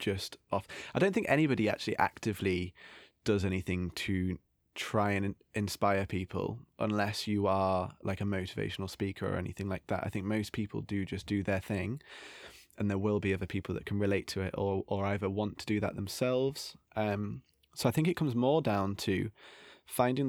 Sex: male